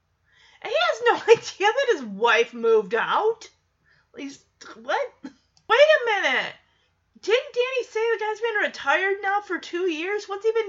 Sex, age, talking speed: female, 30-49, 155 wpm